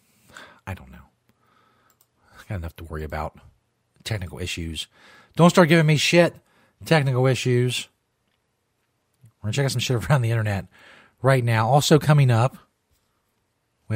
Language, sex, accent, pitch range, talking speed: English, male, American, 110-150 Hz, 145 wpm